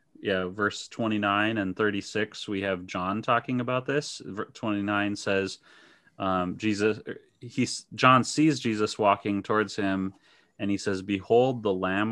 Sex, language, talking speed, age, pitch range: male, English, 155 wpm, 30-49, 95-105 Hz